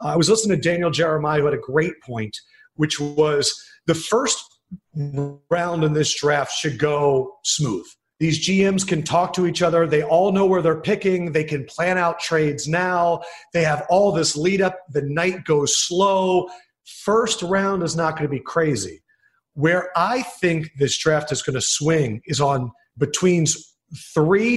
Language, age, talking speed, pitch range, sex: English, 40-59, 175 wpm, 150-195 Hz, male